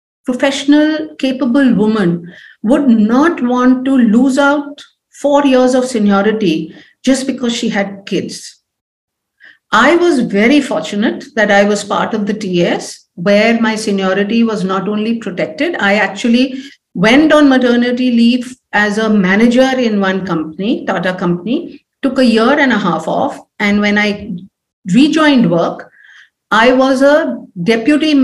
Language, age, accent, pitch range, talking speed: English, 50-69, Indian, 205-270 Hz, 140 wpm